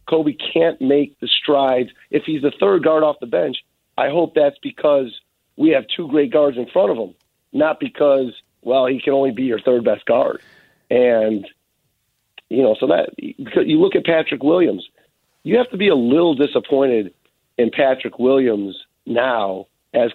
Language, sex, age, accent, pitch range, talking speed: English, male, 40-59, American, 125-175 Hz, 175 wpm